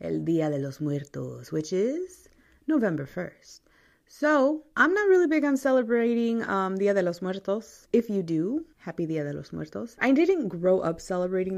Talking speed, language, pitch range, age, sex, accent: 175 wpm, English, 165-235 Hz, 20-39, female, American